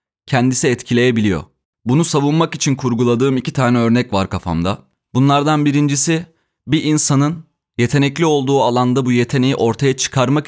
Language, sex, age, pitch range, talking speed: Turkish, male, 30-49, 115-140 Hz, 125 wpm